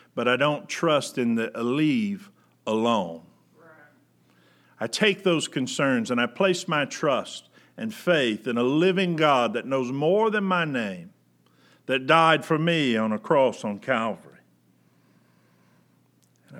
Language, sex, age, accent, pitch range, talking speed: English, male, 50-69, American, 100-165 Hz, 140 wpm